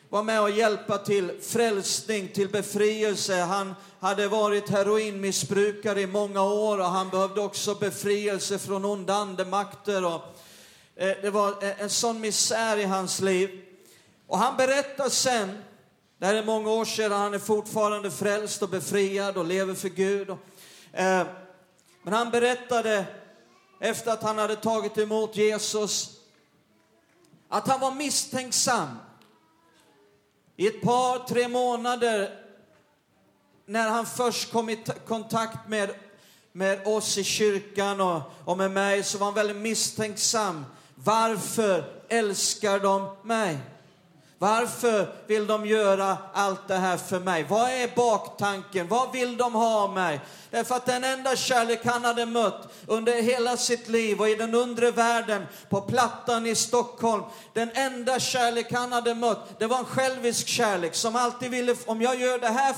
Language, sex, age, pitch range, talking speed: Swedish, male, 40-59, 195-230 Hz, 150 wpm